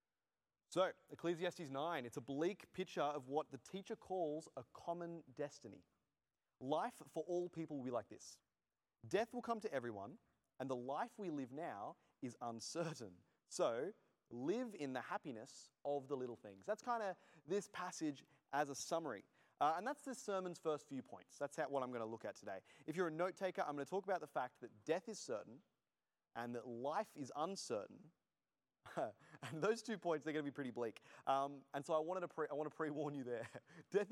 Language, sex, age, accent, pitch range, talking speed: English, male, 30-49, Australian, 130-180 Hz, 190 wpm